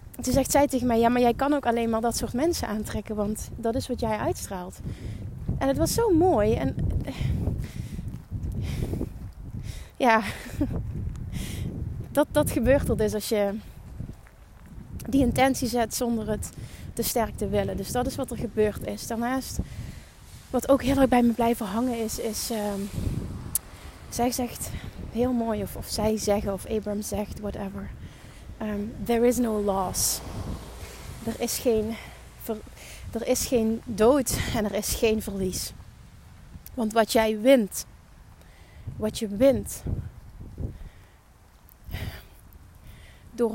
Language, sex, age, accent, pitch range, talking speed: Dutch, female, 20-39, Dutch, 205-245 Hz, 135 wpm